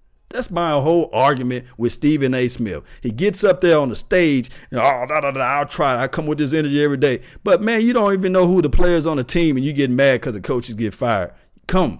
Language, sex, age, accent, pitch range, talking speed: English, male, 50-69, American, 120-160 Hz, 260 wpm